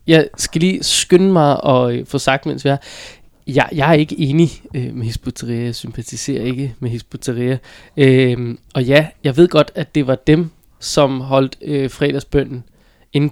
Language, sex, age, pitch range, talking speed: Danish, male, 20-39, 130-155 Hz, 170 wpm